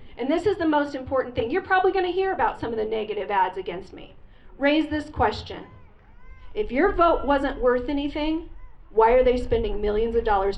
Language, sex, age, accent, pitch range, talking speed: English, female, 40-59, American, 235-365 Hz, 205 wpm